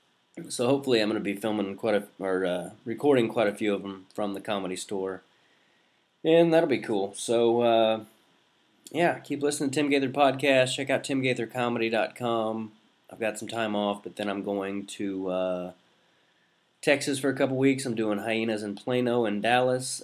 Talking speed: 180 wpm